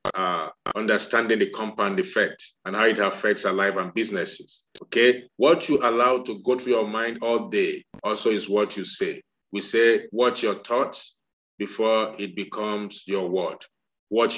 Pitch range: 110-145 Hz